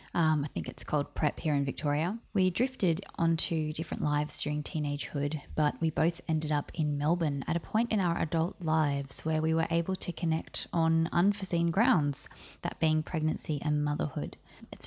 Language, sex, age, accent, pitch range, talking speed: English, female, 20-39, Australian, 150-175 Hz, 180 wpm